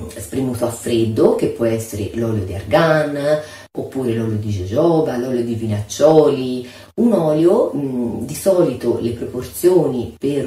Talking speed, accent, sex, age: 130 wpm, native, female, 40-59